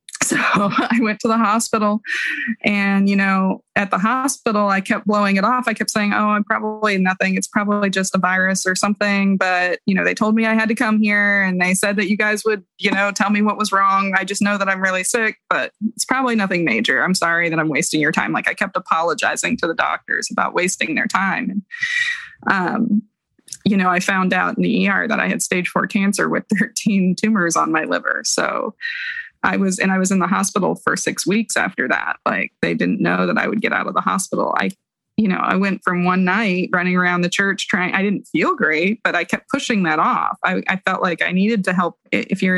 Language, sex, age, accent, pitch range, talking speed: English, female, 20-39, American, 185-220 Hz, 235 wpm